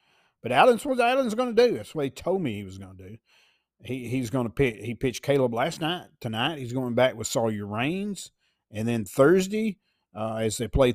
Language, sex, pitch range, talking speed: English, male, 115-155 Hz, 225 wpm